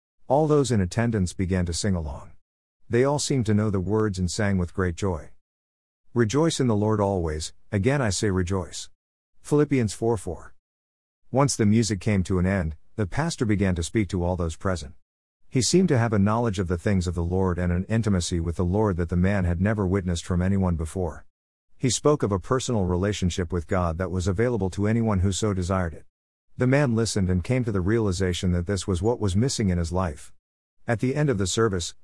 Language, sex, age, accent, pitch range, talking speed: English, male, 50-69, American, 90-110 Hz, 215 wpm